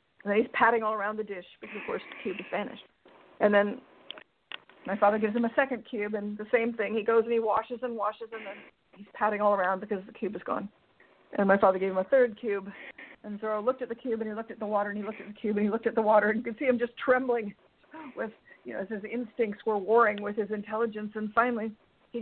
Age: 50-69